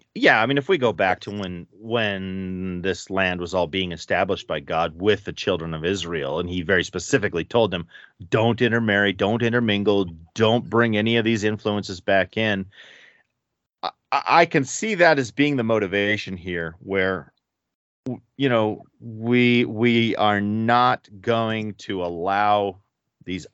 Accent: American